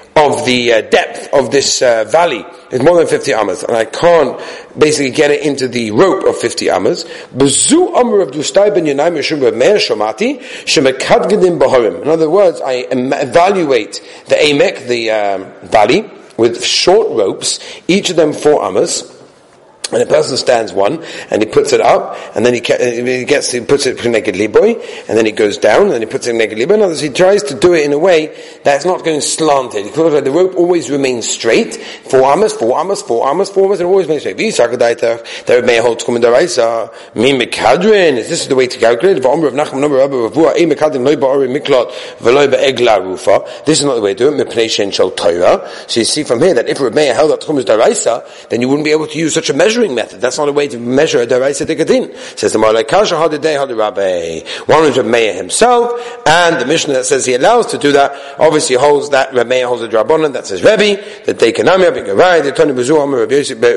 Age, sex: 40-59, male